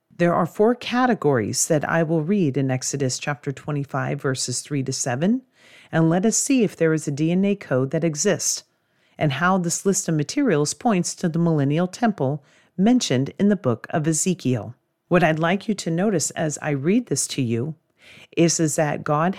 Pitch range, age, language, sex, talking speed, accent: 145-185 Hz, 40-59, English, female, 190 wpm, American